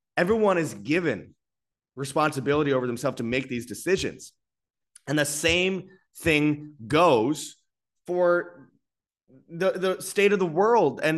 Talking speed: 125 wpm